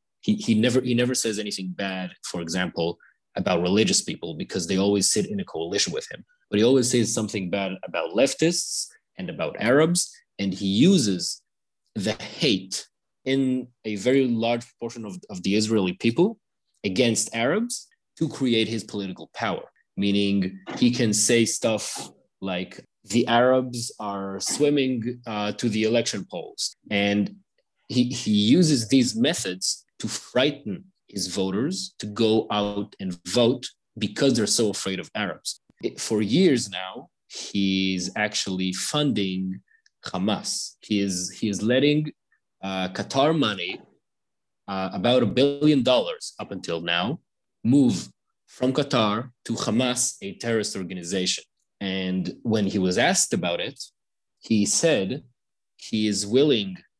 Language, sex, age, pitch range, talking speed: English, male, 30-49, 100-130 Hz, 140 wpm